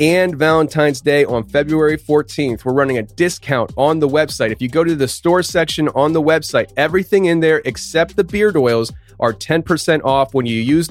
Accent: American